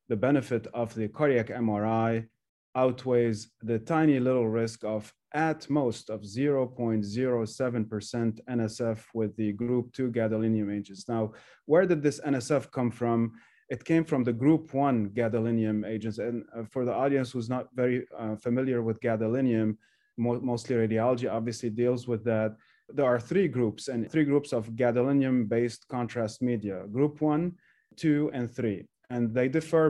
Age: 30-49